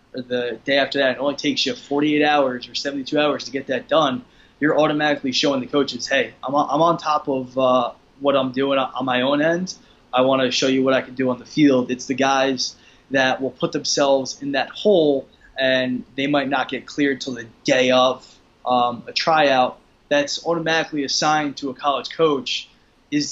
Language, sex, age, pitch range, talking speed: English, male, 20-39, 125-145 Hz, 205 wpm